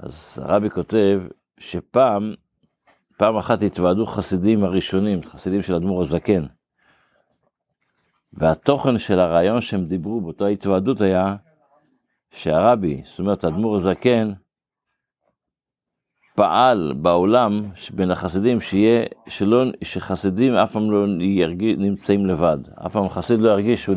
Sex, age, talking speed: male, 50-69, 110 wpm